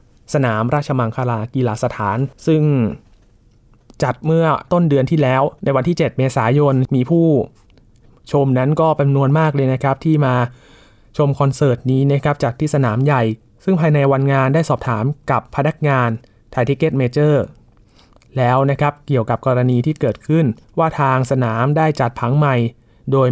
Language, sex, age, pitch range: Thai, male, 20-39, 125-155 Hz